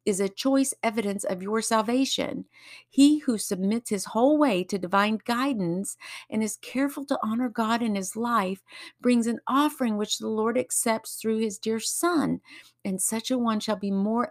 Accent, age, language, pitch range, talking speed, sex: American, 50-69, English, 180-235 Hz, 180 wpm, female